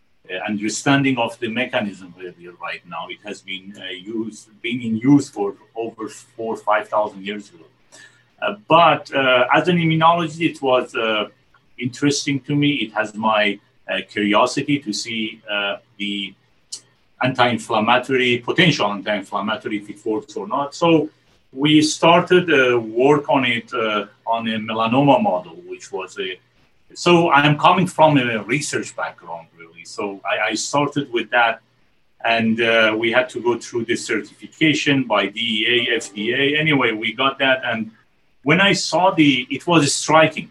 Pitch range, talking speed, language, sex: 105-140 Hz, 160 wpm, English, male